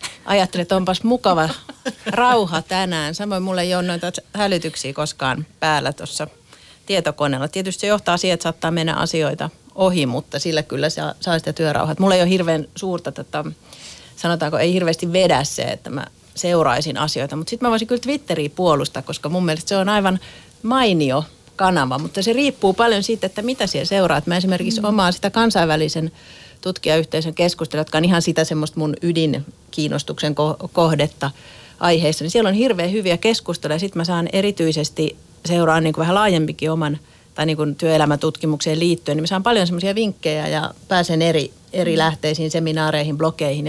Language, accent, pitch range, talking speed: Finnish, native, 155-190 Hz, 165 wpm